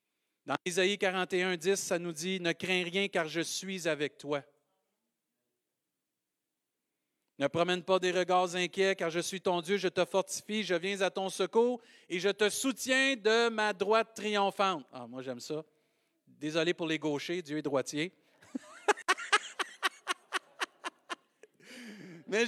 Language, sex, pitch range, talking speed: French, male, 195-285 Hz, 150 wpm